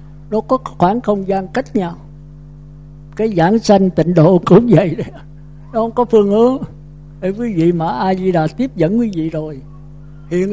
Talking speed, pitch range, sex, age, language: 170 wpm, 150-210 Hz, male, 60-79, Vietnamese